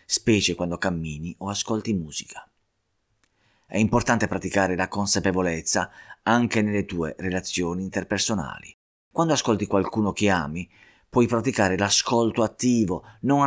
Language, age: Italian, 30-49